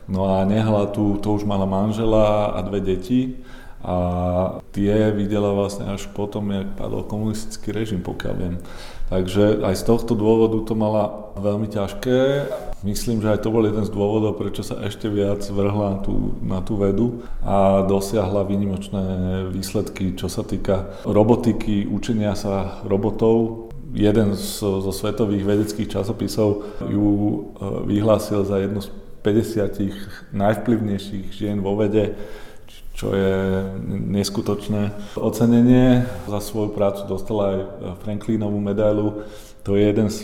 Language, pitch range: Slovak, 100-110 Hz